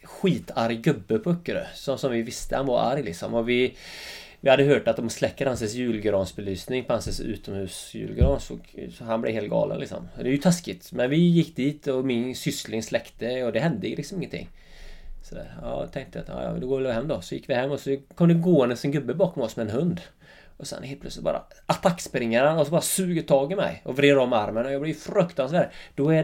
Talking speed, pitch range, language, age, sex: 225 wpm, 120-160 Hz, Swedish, 30-49, male